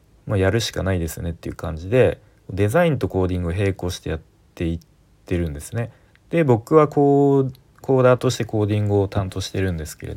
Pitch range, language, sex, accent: 85-120 Hz, Japanese, male, native